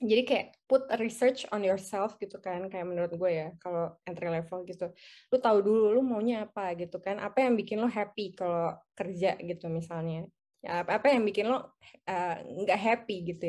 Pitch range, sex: 180-235 Hz, female